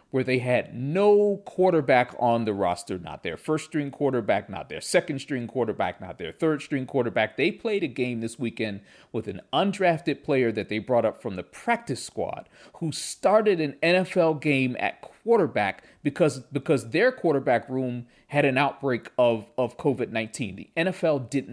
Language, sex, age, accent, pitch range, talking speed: English, male, 40-59, American, 125-165 Hz, 175 wpm